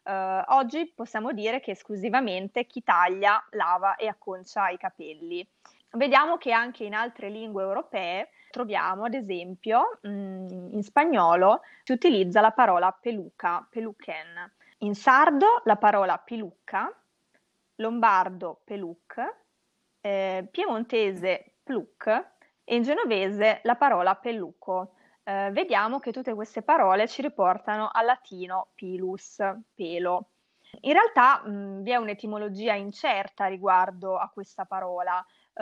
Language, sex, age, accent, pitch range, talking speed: Italian, female, 20-39, native, 190-235 Hz, 120 wpm